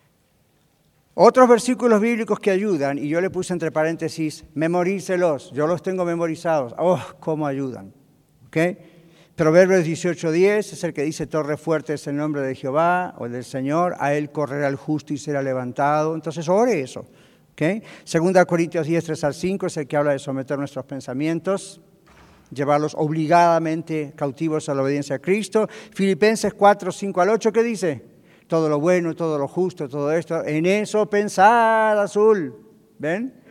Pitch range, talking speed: 150-195 Hz, 160 wpm